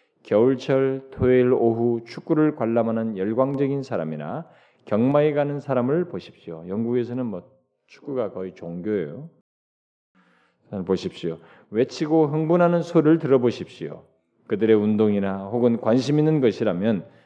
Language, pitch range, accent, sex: Korean, 100-150 Hz, native, male